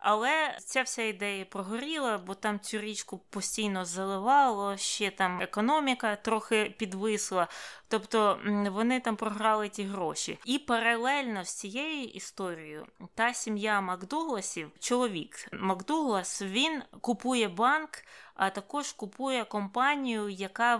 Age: 20-39